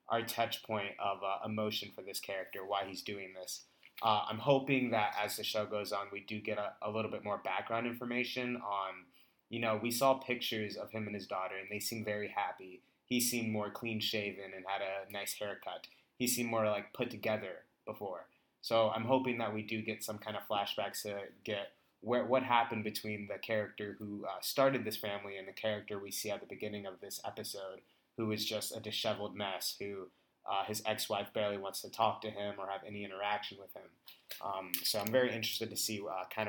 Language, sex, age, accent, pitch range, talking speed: English, male, 20-39, American, 100-115 Hz, 215 wpm